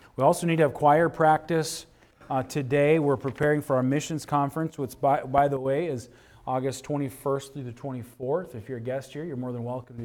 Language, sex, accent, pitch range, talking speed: English, male, American, 120-140 Hz, 215 wpm